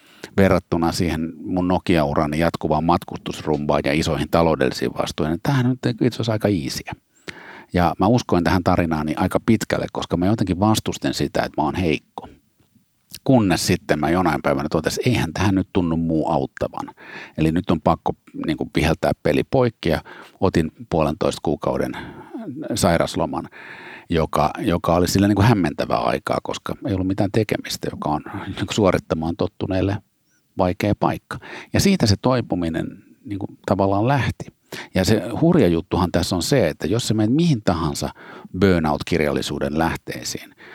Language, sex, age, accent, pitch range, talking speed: Finnish, male, 50-69, native, 80-110 Hz, 150 wpm